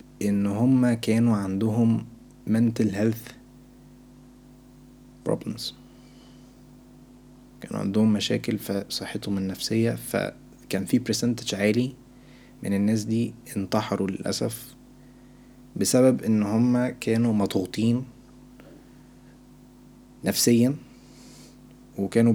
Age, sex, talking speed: 20-39, male, 80 wpm